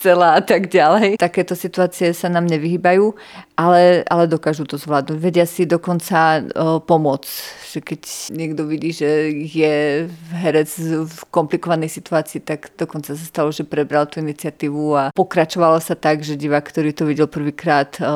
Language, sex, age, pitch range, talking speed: Slovak, female, 30-49, 155-175 Hz, 155 wpm